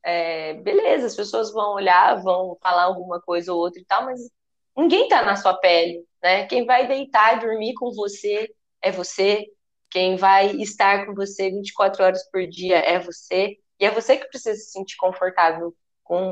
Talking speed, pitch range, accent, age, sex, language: 185 wpm, 185-255 Hz, Brazilian, 20-39, female, Portuguese